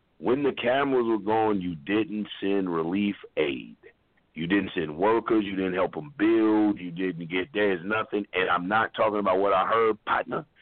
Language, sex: English, male